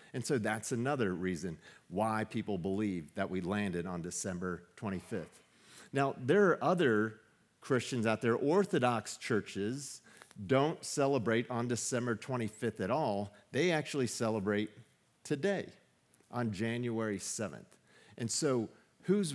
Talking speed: 125 wpm